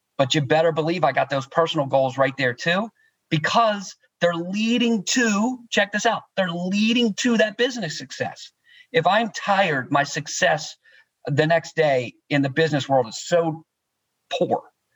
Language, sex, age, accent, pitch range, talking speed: English, male, 40-59, American, 135-170 Hz, 160 wpm